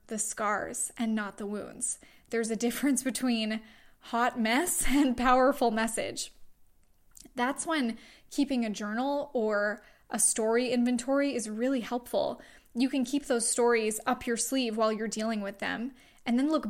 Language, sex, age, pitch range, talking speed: English, female, 10-29, 220-260 Hz, 155 wpm